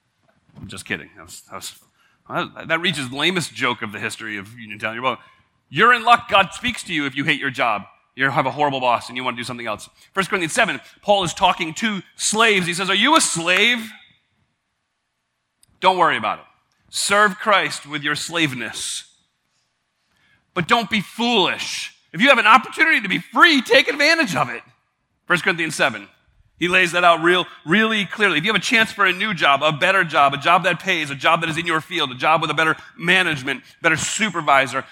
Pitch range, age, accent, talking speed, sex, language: 160-235 Hz, 30-49, American, 205 wpm, male, English